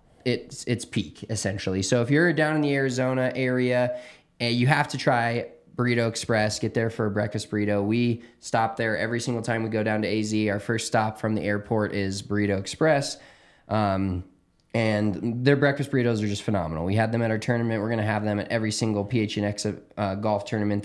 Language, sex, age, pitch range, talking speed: English, male, 20-39, 105-120 Hz, 205 wpm